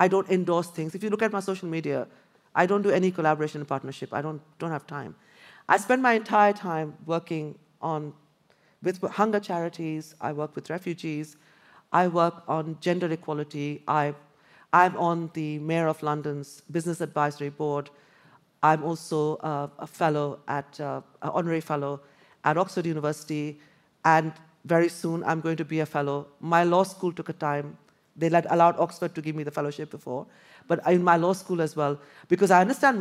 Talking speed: 180 wpm